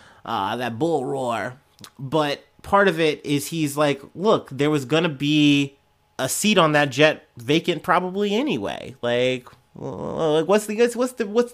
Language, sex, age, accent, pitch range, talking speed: English, male, 30-49, American, 120-155 Hz, 170 wpm